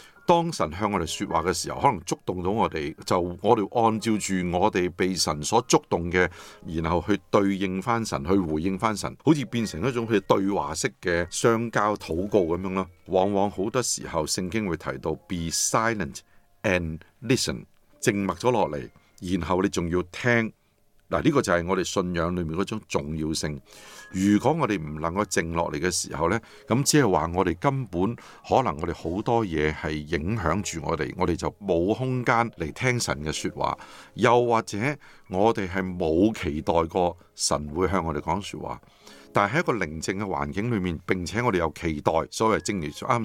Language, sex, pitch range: Chinese, male, 85-110 Hz